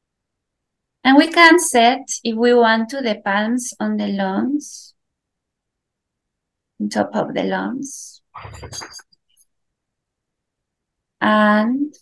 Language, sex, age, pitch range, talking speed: English, female, 20-39, 180-245 Hz, 95 wpm